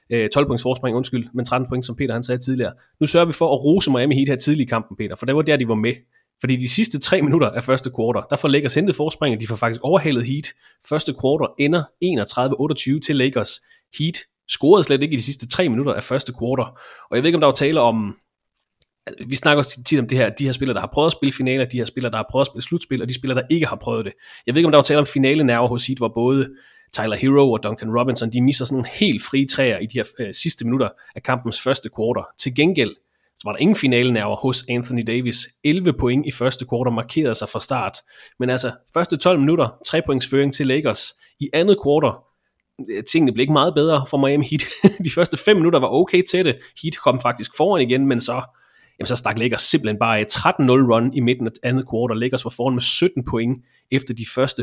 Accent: Danish